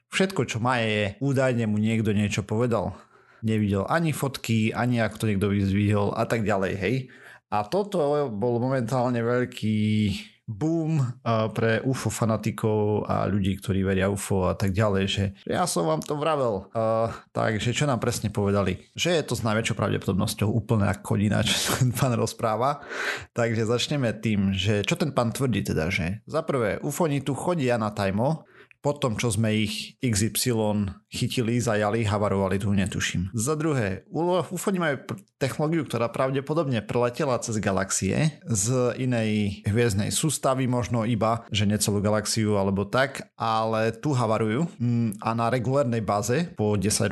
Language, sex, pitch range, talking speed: Slovak, male, 105-130 Hz, 155 wpm